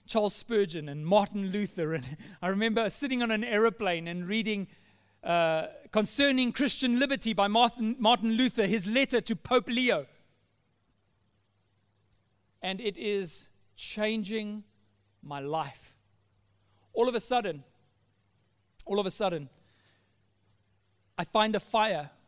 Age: 40-59